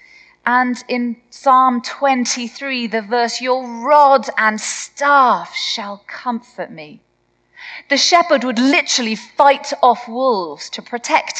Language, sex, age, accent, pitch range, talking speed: English, female, 30-49, British, 160-270 Hz, 115 wpm